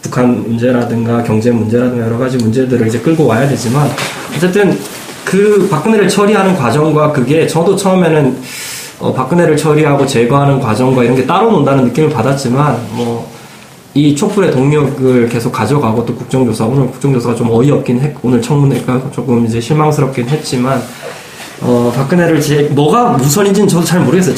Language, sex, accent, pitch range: Korean, male, native, 120-155 Hz